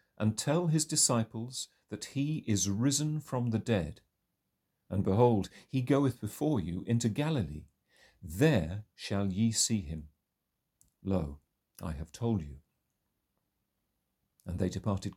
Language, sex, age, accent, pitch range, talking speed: English, male, 50-69, British, 90-120 Hz, 125 wpm